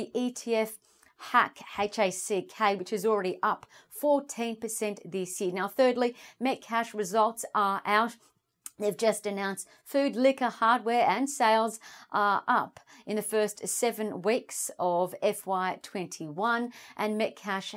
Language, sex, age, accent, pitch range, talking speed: English, female, 40-59, Australian, 190-235 Hz, 120 wpm